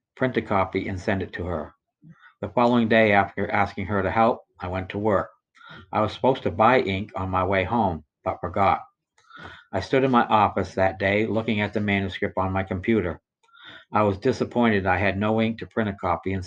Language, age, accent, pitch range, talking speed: English, 60-79, American, 95-115 Hz, 210 wpm